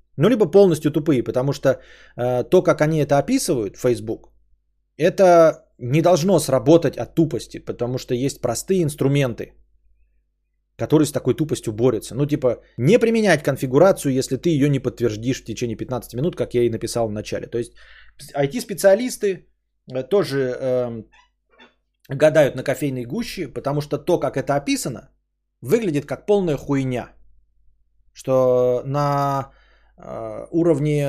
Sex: male